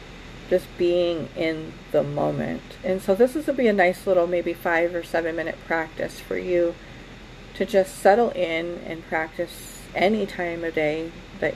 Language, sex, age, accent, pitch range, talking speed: English, female, 40-59, American, 160-185 Hz, 170 wpm